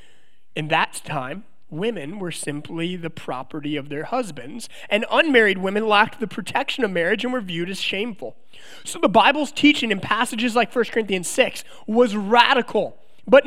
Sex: male